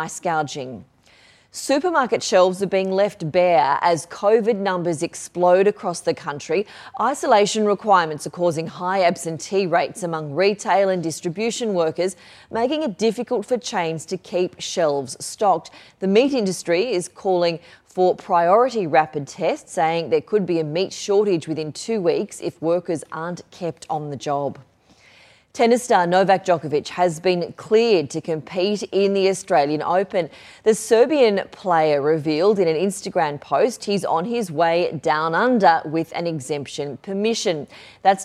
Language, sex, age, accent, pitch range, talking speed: English, female, 30-49, Australian, 165-205 Hz, 145 wpm